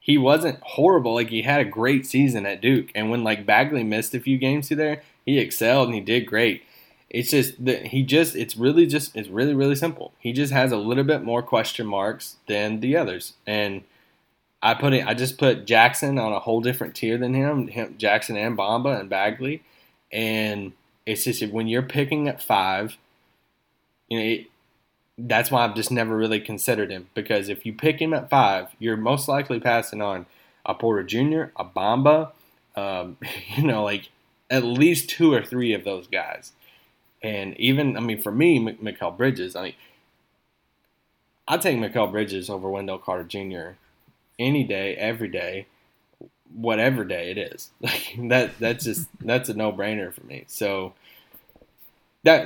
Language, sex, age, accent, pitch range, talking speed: English, male, 10-29, American, 110-135 Hz, 175 wpm